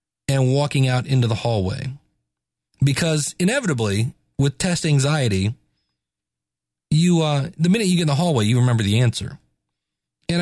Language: English